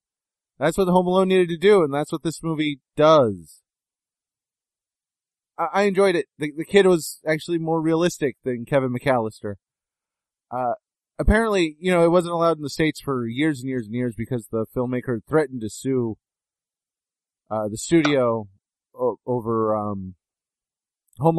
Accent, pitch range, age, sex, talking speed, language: American, 115-165 Hz, 30-49, male, 155 wpm, English